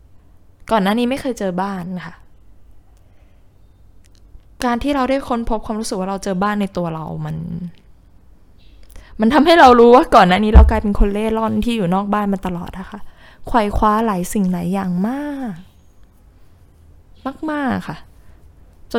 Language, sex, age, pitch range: Thai, female, 10-29, 160-225 Hz